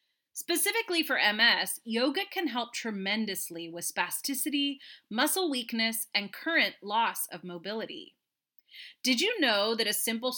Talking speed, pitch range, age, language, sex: 125 wpm, 205-300 Hz, 30-49, English, female